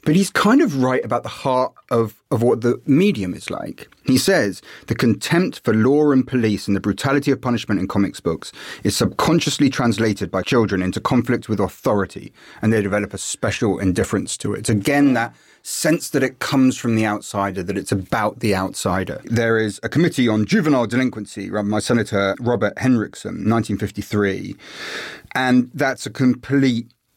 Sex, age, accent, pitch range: male, 30-49, British, 100-125 Hz